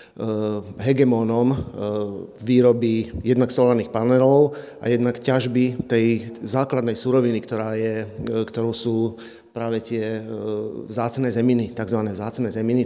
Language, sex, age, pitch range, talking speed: Slovak, male, 40-59, 115-125 Hz, 105 wpm